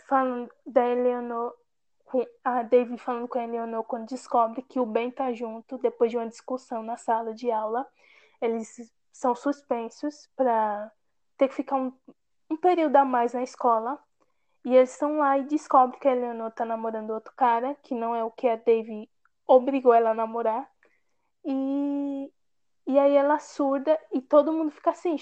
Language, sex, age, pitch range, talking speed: Portuguese, female, 20-39, 240-285 Hz, 170 wpm